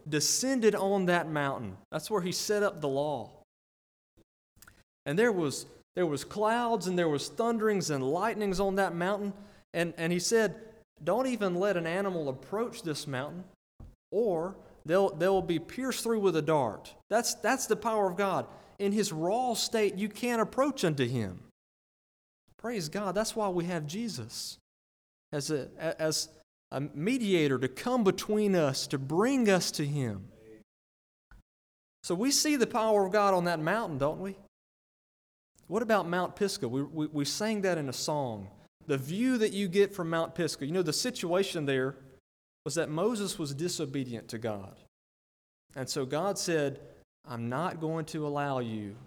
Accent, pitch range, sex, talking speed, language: American, 135-210 Hz, male, 170 wpm, English